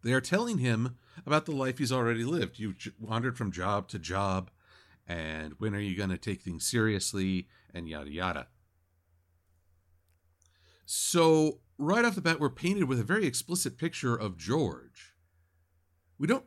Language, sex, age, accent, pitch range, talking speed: English, male, 50-69, American, 90-130 Hz, 165 wpm